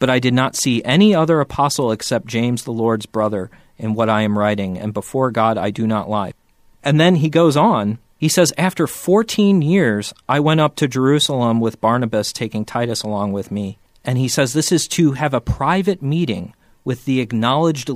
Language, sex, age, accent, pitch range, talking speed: English, male, 40-59, American, 110-150 Hz, 200 wpm